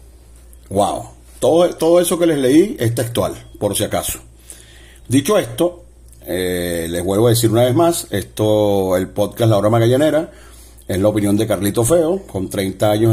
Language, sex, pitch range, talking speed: Spanish, male, 90-125 Hz, 170 wpm